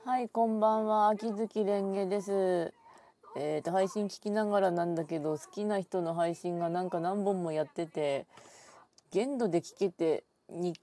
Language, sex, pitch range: Japanese, female, 155-200 Hz